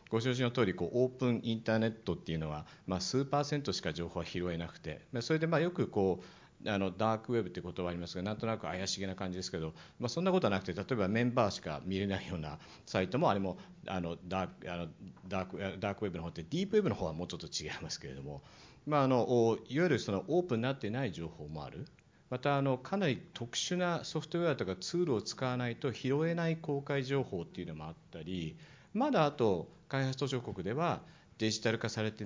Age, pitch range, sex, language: 50-69, 95-145 Hz, male, Japanese